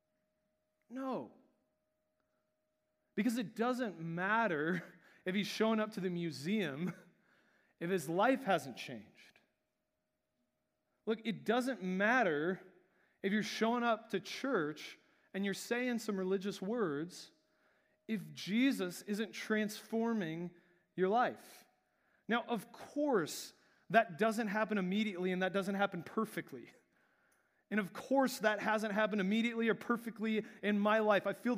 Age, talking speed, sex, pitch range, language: 30-49, 125 wpm, male, 175-220 Hz, English